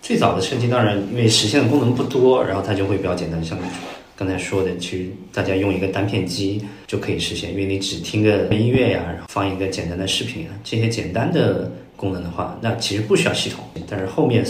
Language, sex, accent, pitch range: Chinese, male, native, 90-110 Hz